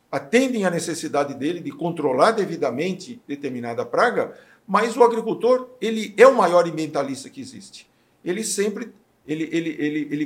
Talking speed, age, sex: 145 wpm, 50-69, male